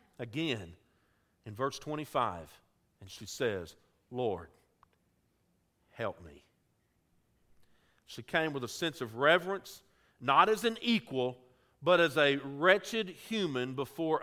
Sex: male